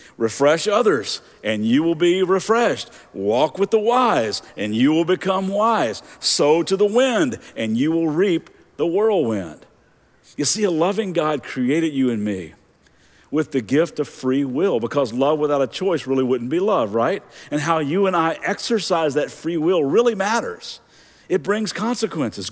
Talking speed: 175 wpm